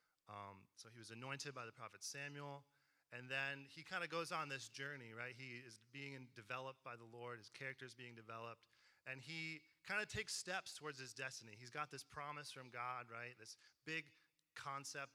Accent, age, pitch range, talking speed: American, 30-49, 120-145 Hz, 200 wpm